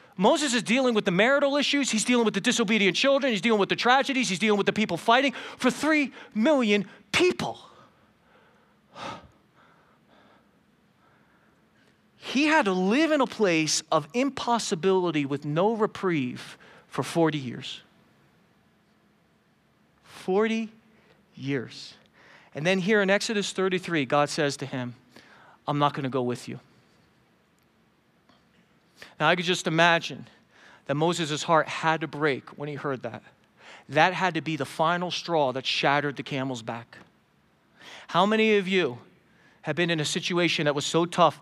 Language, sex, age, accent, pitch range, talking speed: English, male, 40-59, American, 150-210 Hz, 145 wpm